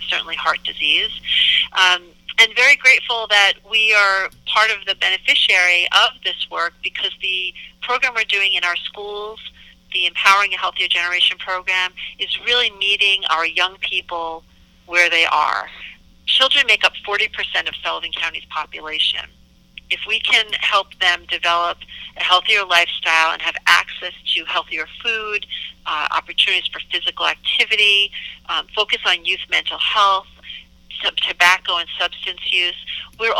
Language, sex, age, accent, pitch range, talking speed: English, female, 40-59, American, 175-210 Hz, 140 wpm